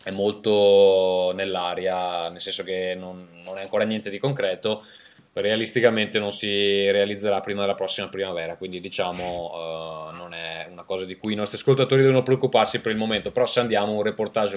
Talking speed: 175 wpm